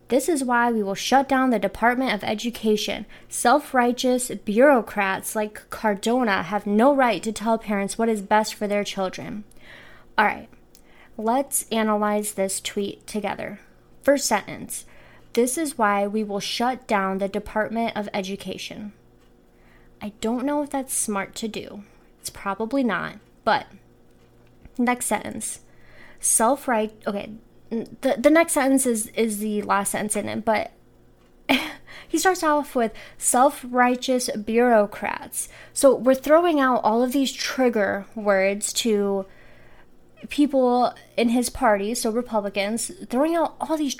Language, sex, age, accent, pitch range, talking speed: English, female, 20-39, American, 205-255 Hz, 140 wpm